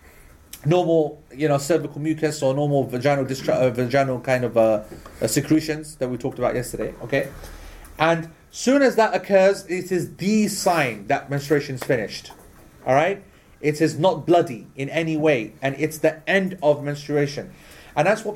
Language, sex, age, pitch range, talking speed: English, male, 30-49, 150-185 Hz, 175 wpm